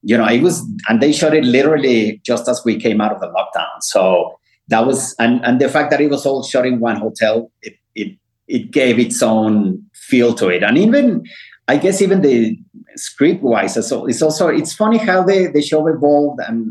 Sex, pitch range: male, 115-155 Hz